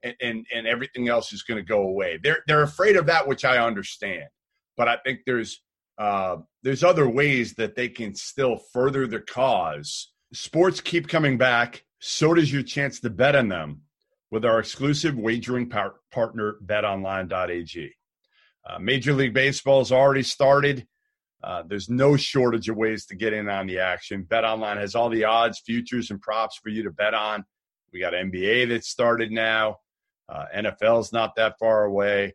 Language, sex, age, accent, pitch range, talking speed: English, male, 40-59, American, 110-135 Hz, 180 wpm